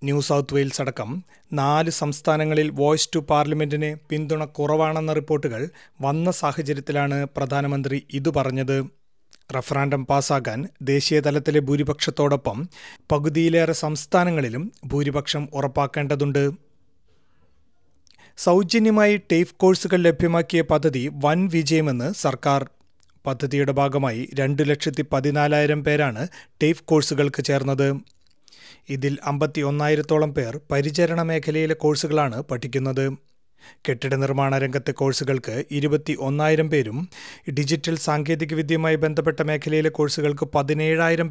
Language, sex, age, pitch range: Malayalam, male, 30-49, 140-155 Hz